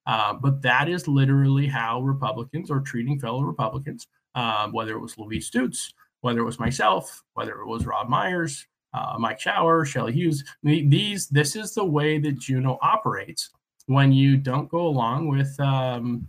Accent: American